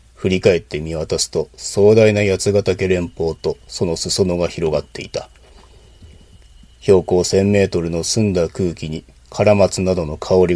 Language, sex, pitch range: Japanese, male, 80-100 Hz